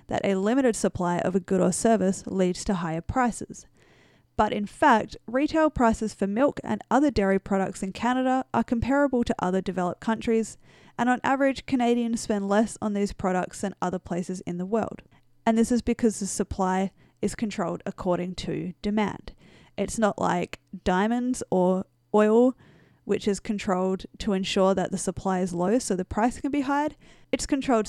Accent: Australian